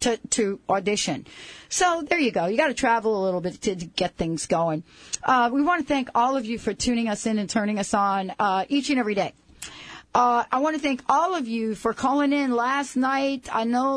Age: 40-59